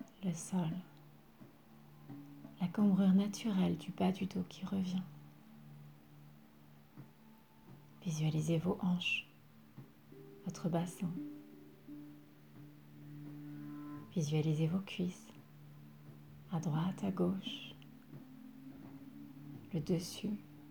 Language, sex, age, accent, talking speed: French, female, 40-59, French, 70 wpm